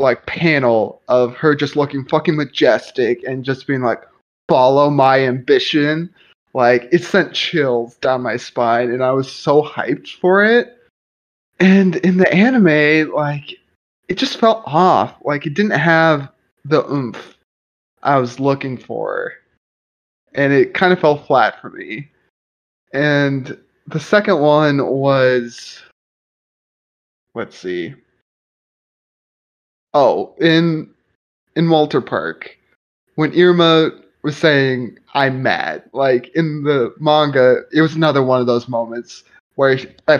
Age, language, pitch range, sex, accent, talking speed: 20-39, English, 125-160 Hz, male, American, 130 wpm